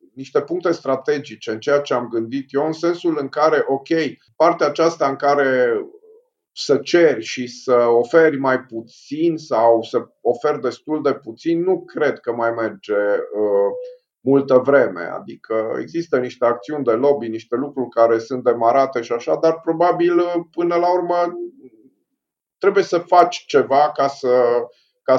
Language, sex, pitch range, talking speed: Romanian, male, 120-170 Hz, 150 wpm